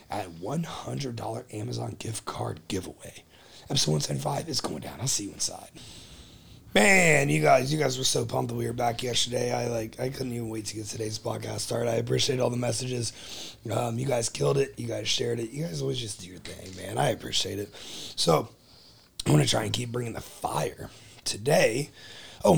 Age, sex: 30-49, male